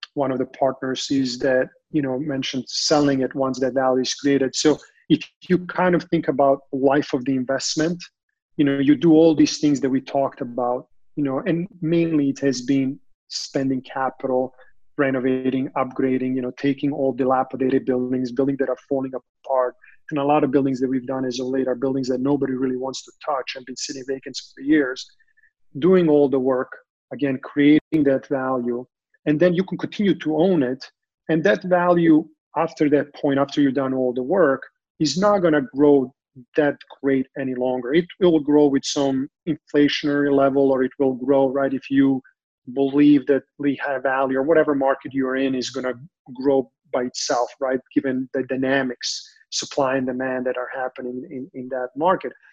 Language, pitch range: English, 130-150 Hz